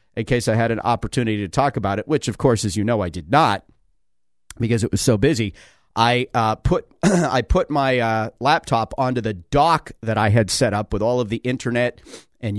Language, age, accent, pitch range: English, 40-59, American, 105-130 Hz